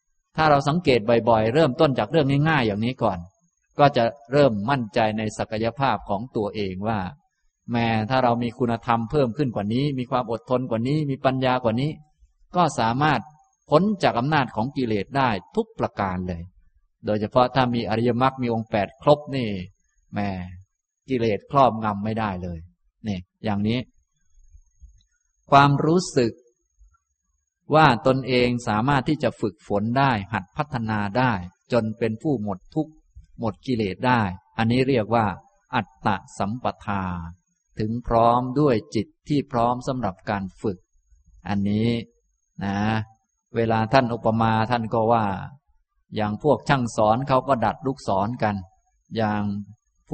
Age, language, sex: 20-39, Thai, male